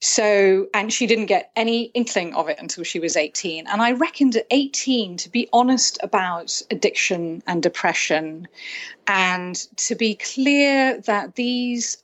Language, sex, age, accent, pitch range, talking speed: English, female, 30-49, British, 175-230 Hz, 155 wpm